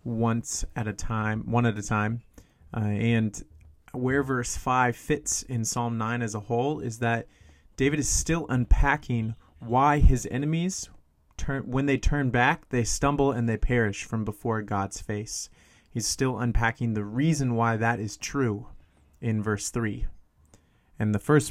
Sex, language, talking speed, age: male, English, 160 wpm, 30-49